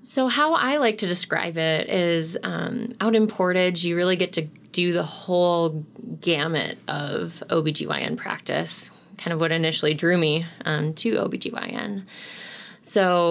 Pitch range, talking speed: 160-195 Hz, 150 wpm